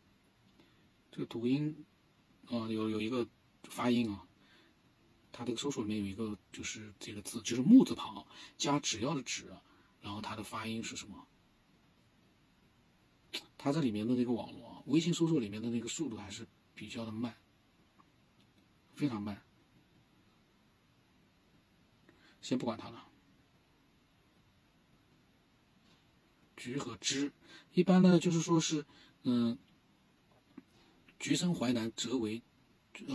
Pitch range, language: 110-145 Hz, Chinese